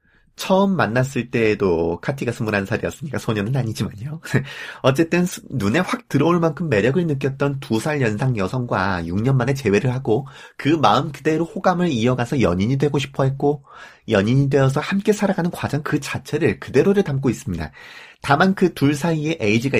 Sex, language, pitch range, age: male, Korean, 105-155 Hz, 30-49